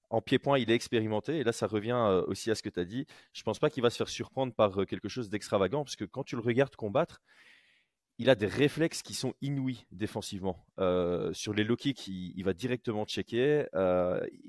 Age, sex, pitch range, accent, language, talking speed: 30-49, male, 95-125 Hz, French, French, 225 wpm